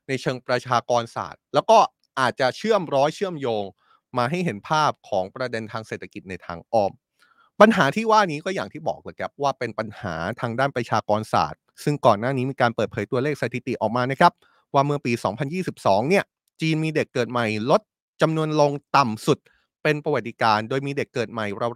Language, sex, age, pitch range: Thai, male, 20-39, 120-180 Hz